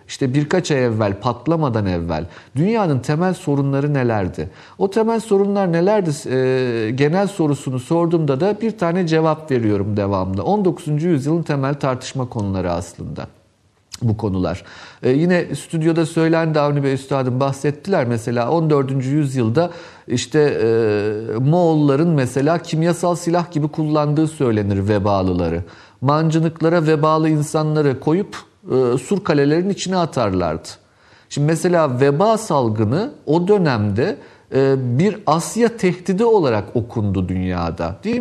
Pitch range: 110-165 Hz